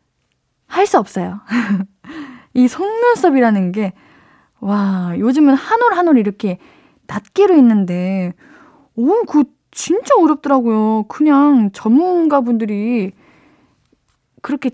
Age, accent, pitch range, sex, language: 20-39, native, 205-305 Hz, female, Korean